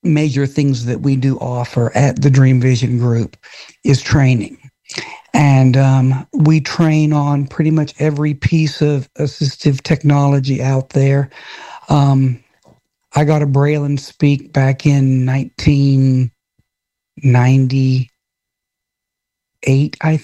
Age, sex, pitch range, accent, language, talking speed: 60-79, male, 135-150 Hz, American, English, 110 wpm